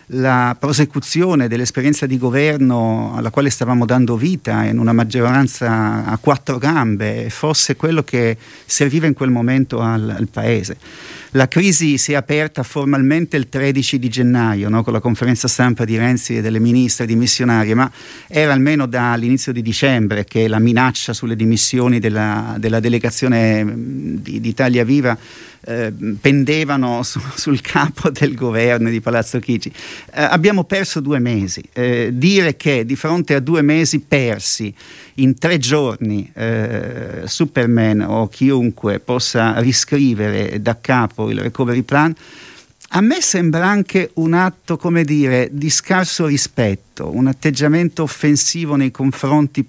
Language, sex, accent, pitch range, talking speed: Italian, male, native, 115-145 Hz, 145 wpm